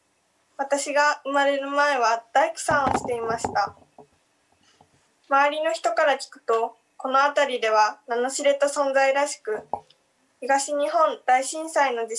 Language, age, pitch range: Japanese, 20-39, 240-290 Hz